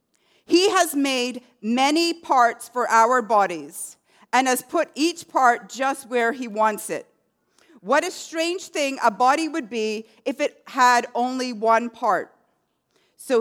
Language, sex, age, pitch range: English, female, 40-59, 230-310 Hz